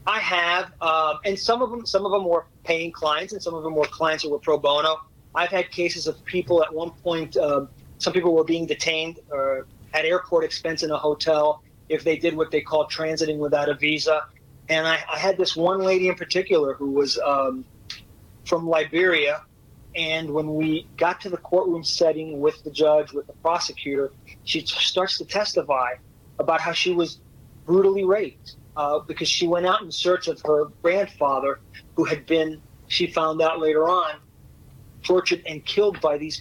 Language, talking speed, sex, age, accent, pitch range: English, 190 wpm, male, 30-49, American, 145-175 Hz